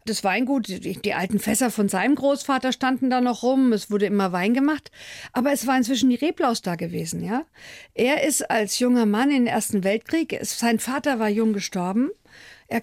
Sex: female